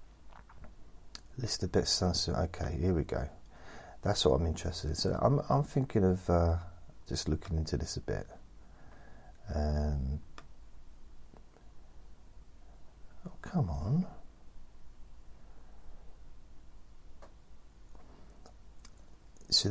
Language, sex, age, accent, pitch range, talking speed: English, male, 40-59, British, 75-90 Hz, 95 wpm